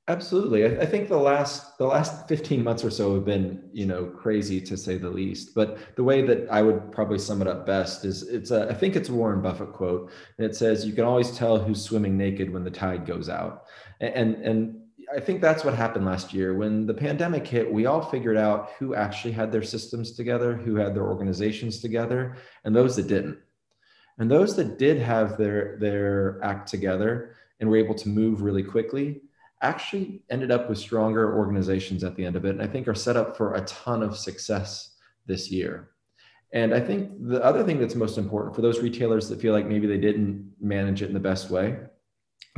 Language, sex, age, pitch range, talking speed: English, male, 30-49, 100-120 Hz, 215 wpm